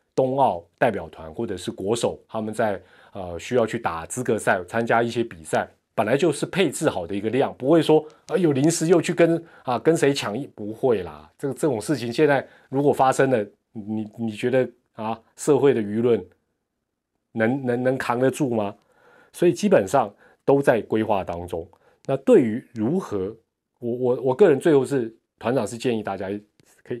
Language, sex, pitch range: Chinese, male, 100-130 Hz